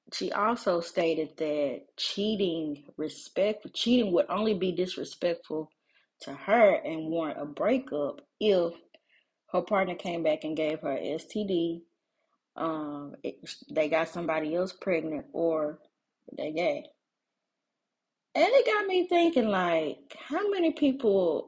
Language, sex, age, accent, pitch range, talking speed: English, female, 20-39, American, 170-250 Hz, 125 wpm